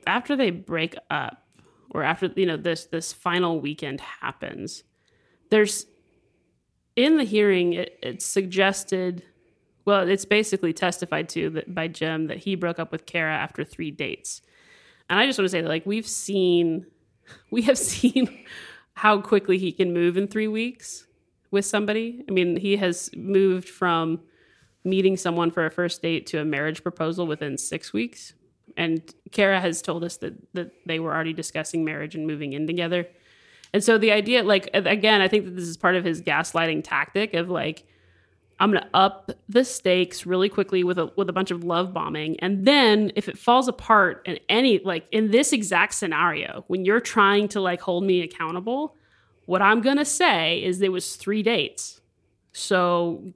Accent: American